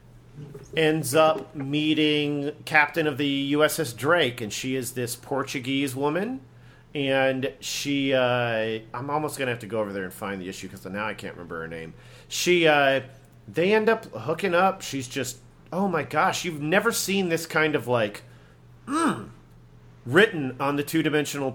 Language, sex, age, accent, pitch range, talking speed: English, male, 40-59, American, 115-155 Hz, 170 wpm